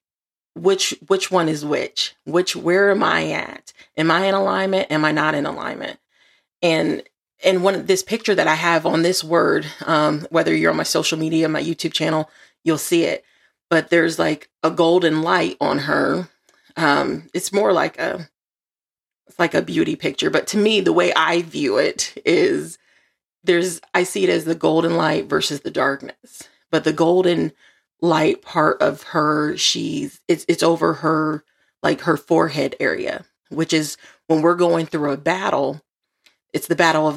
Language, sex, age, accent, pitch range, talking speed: English, female, 30-49, American, 155-190 Hz, 180 wpm